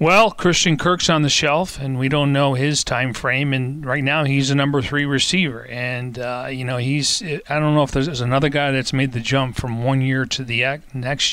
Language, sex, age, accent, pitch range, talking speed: English, male, 40-59, American, 125-145 Hz, 235 wpm